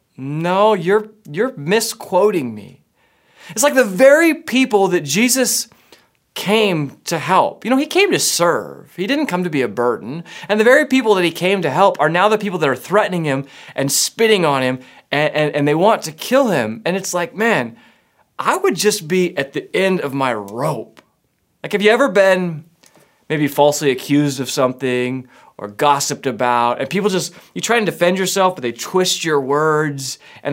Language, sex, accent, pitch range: English, male, American, 140-205 Hz